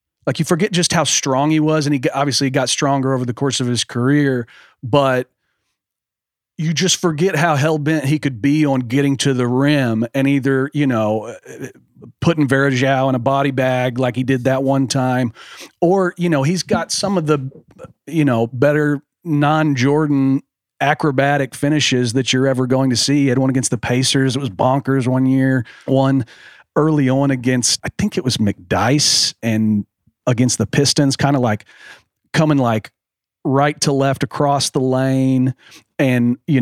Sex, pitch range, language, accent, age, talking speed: male, 130-145 Hz, English, American, 40-59, 180 wpm